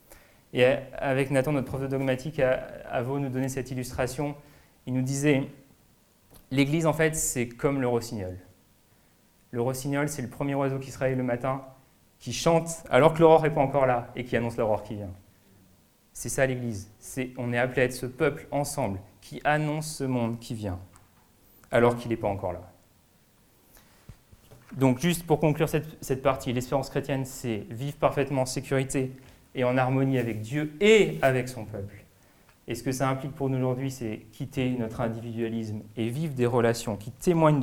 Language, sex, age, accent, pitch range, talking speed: French, male, 30-49, French, 120-155 Hz, 180 wpm